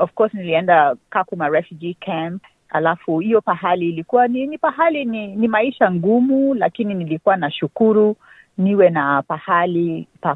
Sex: female